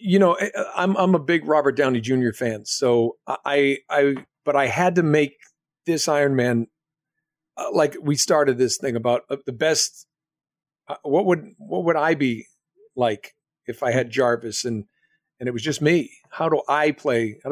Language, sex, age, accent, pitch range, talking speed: English, male, 50-69, American, 130-175 Hz, 180 wpm